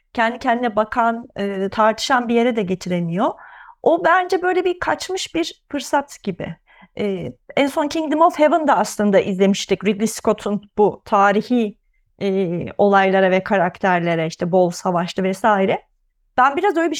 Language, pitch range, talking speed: Turkish, 195-260 Hz, 135 wpm